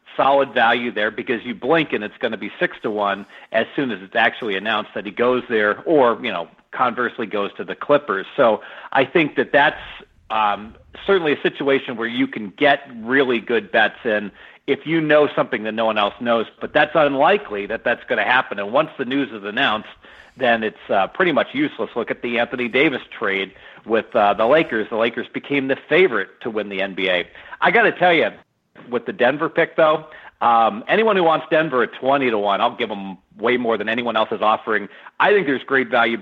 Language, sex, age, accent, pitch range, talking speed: English, male, 50-69, American, 110-140 Hz, 215 wpm